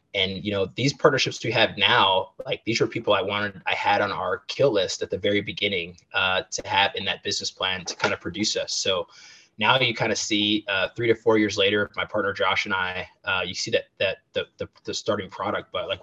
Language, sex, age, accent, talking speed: English, male, 20-39, American, 245 wpm